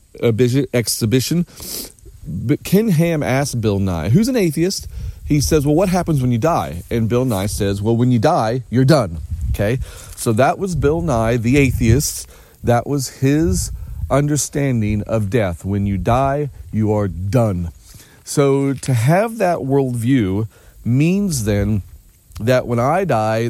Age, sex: 40-59, male